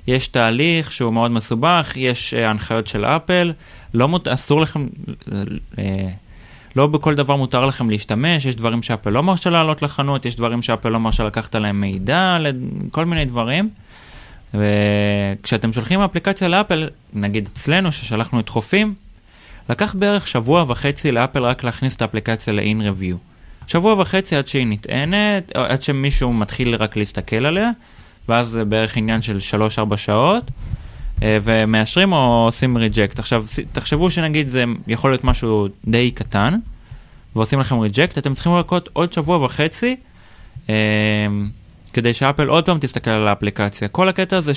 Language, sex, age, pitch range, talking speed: Hebrew, male, 20-39, 105-145 Hz, 150 wpm